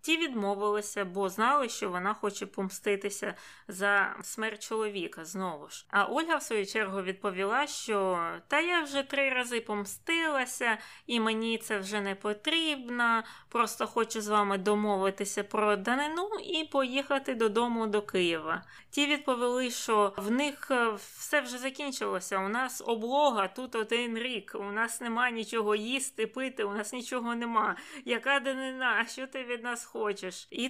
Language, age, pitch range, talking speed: Ukrainian, 20-39, 205-260 Hz, 150 wpm